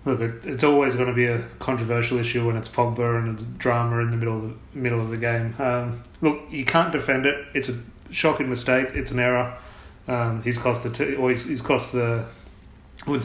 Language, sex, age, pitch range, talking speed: English, male, 30-49, 120-140 Hz, 220 wpm